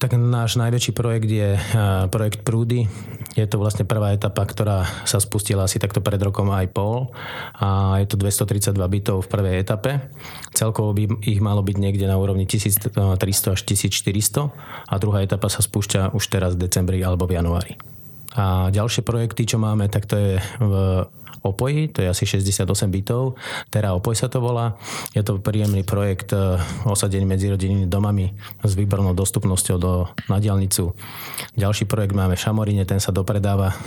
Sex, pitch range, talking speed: male, 95-115 Hz, 165 wpm